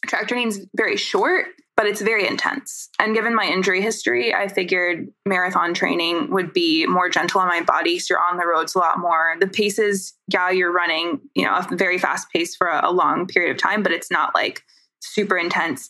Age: 20-39